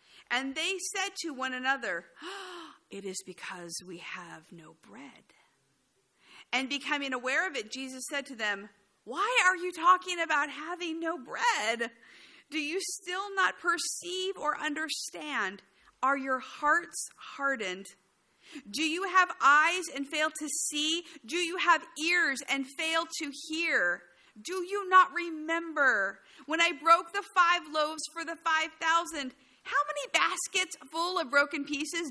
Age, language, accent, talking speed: 50-69, English, American, 145 wpm